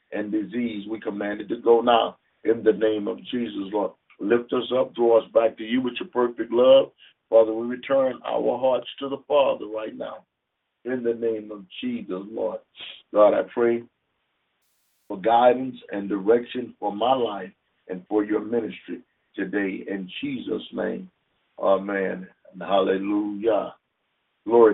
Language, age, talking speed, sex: English, 50-69, 150 wpm, male